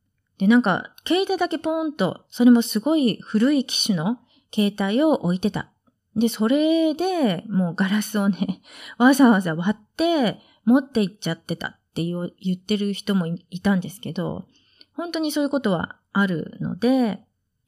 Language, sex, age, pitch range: Japanese, female, 30-49, 200-275 Hz